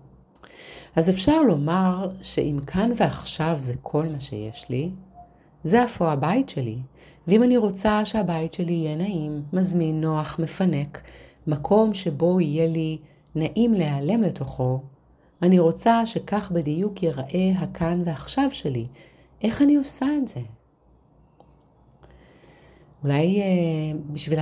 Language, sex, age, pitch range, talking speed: Hebrew, female, 30-49, 145-185 Hz, 120 wpm